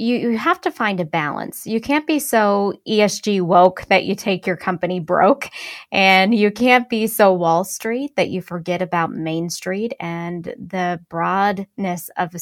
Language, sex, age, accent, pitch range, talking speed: English, female, 10-29, American, 180-215 Hz, 175 wpm